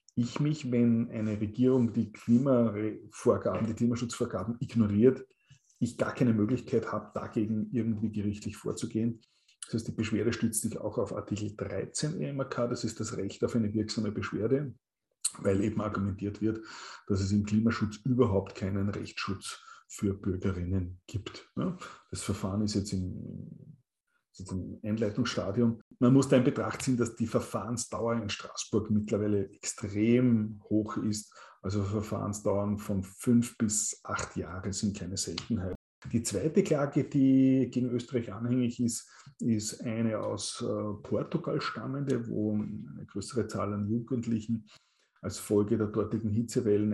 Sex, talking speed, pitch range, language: male, 140 wpm, 105-120 Hz, German